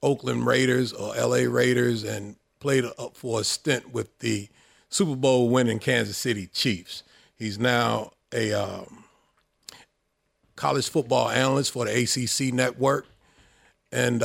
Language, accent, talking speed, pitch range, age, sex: English, American, 130 wpm, 110-130 Hz, 40-59, male